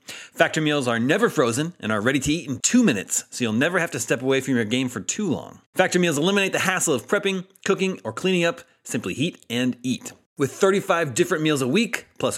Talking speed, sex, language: 235 wpm, male, English